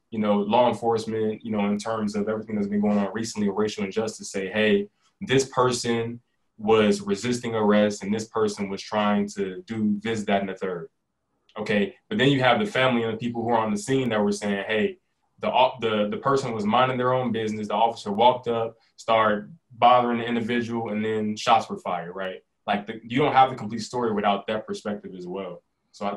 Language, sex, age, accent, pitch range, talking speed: English, male, 20-39, American, 105-125 Hz, 215 wpm